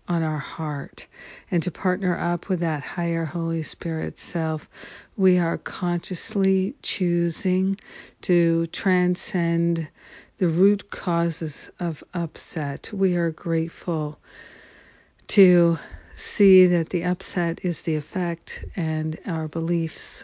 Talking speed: 115 wpm